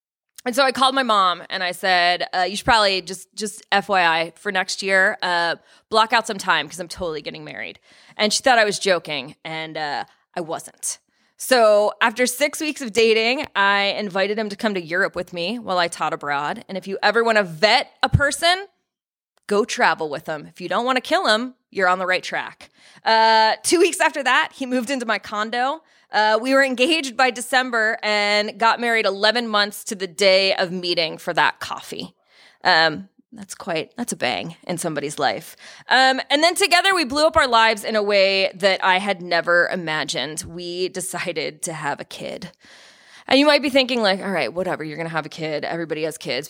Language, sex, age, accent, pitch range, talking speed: English, female, 20-39, American, 175-240 Hz, 210 wpm